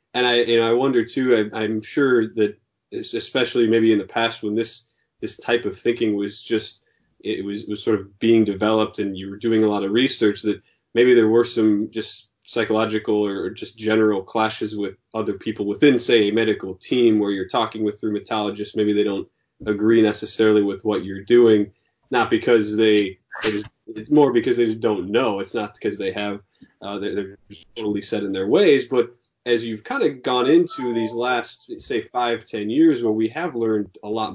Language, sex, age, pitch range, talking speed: English, male, 20-39, 105-120 Hz, 200 wpm